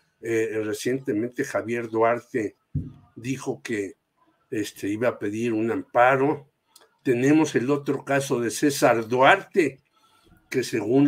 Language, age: Spanish, 60-79